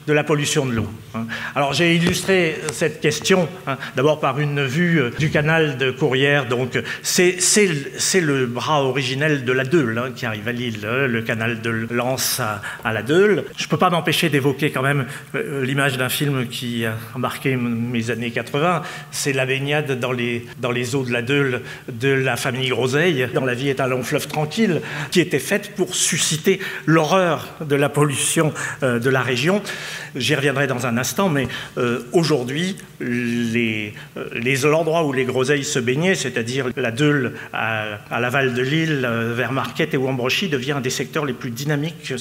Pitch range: 125-155 Hz